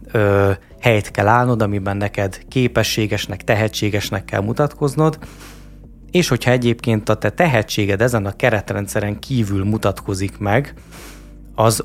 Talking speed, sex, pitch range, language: 110 wpm, male, 100-120 Hz, Hungarian